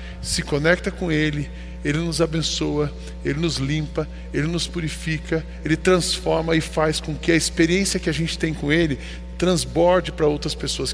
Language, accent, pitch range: Portuguese, Brazilian, 155-230 Hz